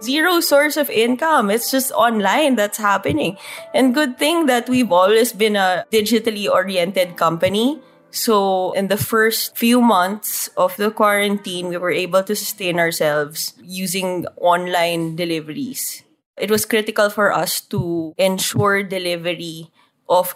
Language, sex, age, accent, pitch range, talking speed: English, female, 20-39, Filipino, 180-240 Hz, 135 wpm